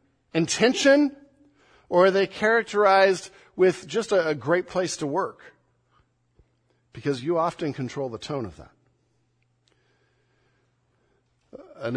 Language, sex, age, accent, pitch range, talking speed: English, male, 50-69, American, 120-155 Hz, 110 wpm